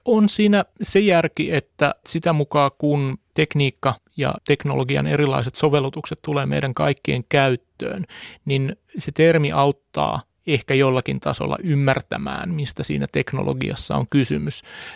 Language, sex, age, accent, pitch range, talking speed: Finnish, male, 30-49, native, 125-155 Hz, 120 wpm